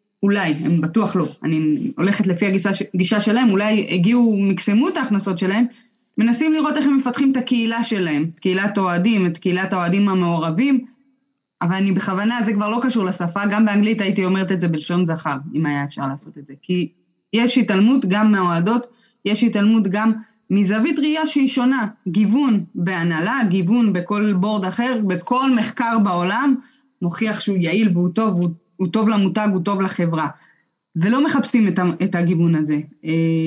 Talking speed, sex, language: 160 wpm, female, Hebrew